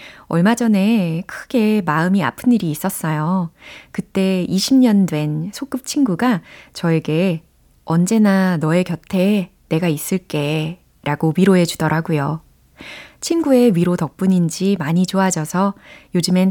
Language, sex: Korean, female